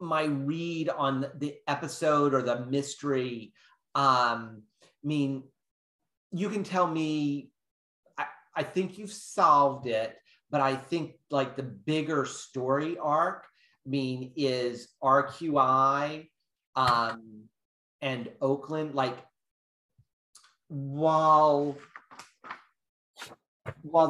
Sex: male